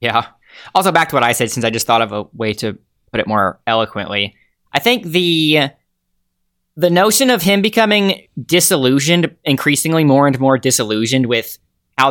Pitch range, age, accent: 115-150 Hz, 10-29, American